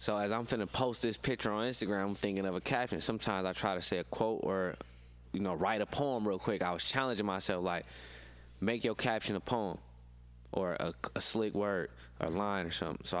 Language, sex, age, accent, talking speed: English, male, 20-39, American, 225 wpm